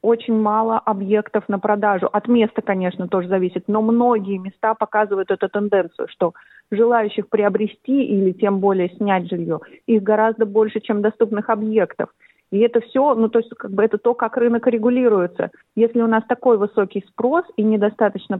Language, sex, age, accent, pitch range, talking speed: Russian, female, 30-49, native, 200-235 Hz, 165 wpm